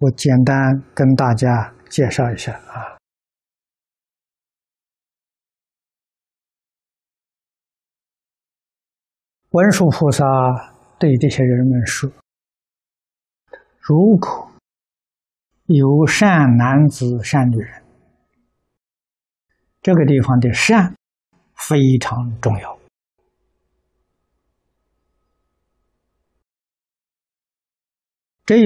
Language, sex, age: Chinese, male, 60-79